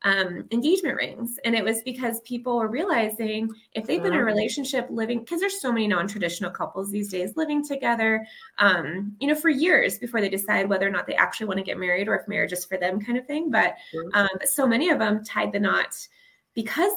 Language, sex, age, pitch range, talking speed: English, female, 20-39, 195-265 Hz, 225 wpm